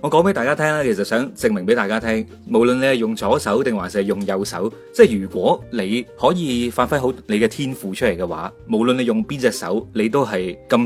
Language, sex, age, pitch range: Chinese, male, 20-39, 105-130 Hz